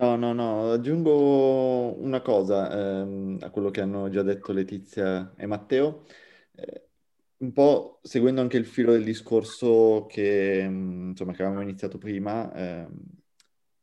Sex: male